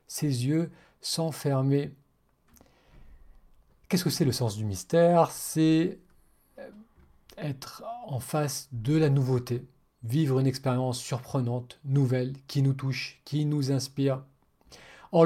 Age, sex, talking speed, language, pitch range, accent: 40-59, male, 115 wpm, French, 130-170 Hz, French